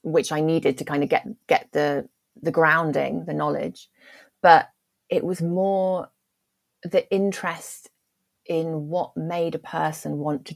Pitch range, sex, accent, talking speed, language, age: 150-190 Hz, female, British, 150 wpm, English, 30-49